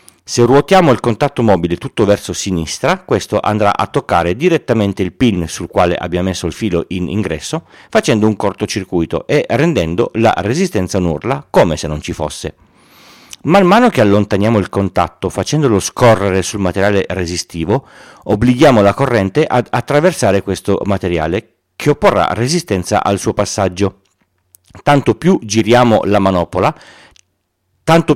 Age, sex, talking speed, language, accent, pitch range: 40-59, male, 140 wpm, Italian, native, 90-120 Hz